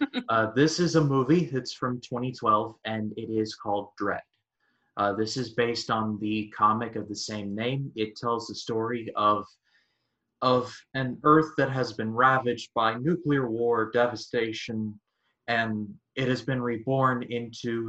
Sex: male